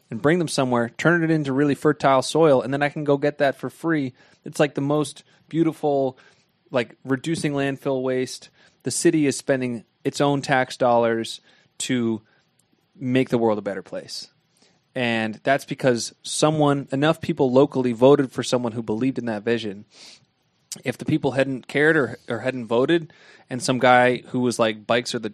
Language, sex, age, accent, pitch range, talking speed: English, male, 20-39, American, 115-145 Hz, 180 wpm